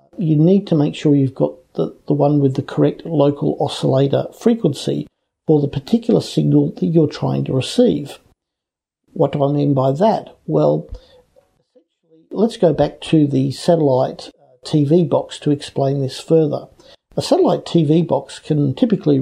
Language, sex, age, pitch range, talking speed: English, male, 50-69, 135-175 Hz, 155 wpm